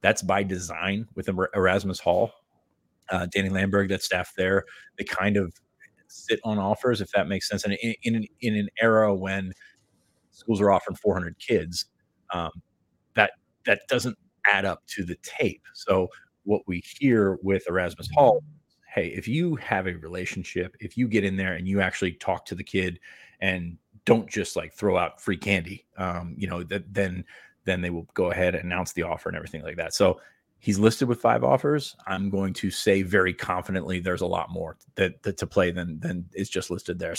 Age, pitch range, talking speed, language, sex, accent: 30-49, 90-105 Hz, 200 wpm, English, male, American